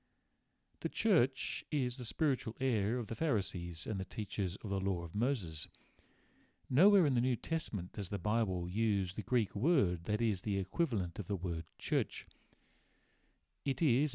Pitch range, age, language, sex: 100-125 Hz, 40-59, English, male